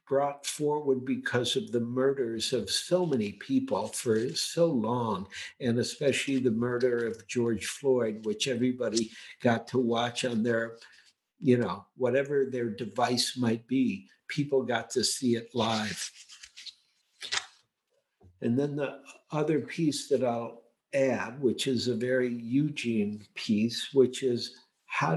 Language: English